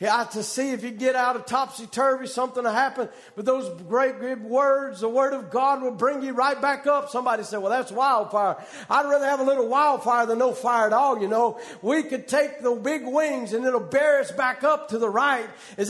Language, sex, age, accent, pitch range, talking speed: English, male, 50-69, American, 250-310 Hz, 230 wpm